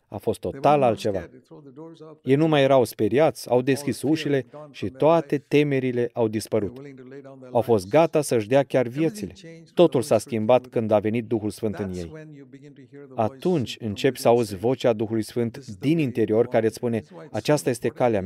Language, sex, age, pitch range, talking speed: Romanian, male, 30-49, 115-155 Hz, 160 wpm